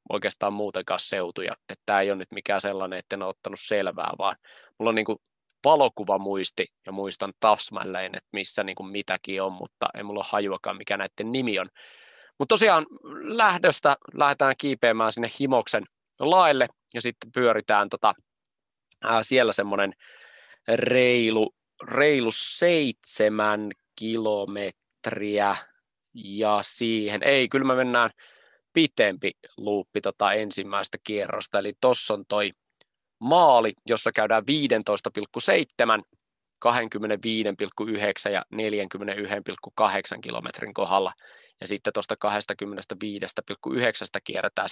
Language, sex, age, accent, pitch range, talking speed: Finnish, male, 20-39, native, 100-120 Hz, 110 wpm